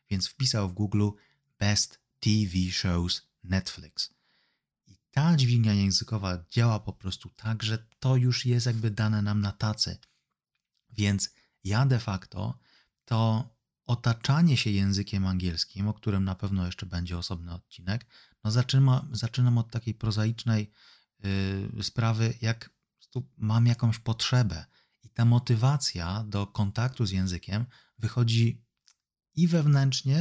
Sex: male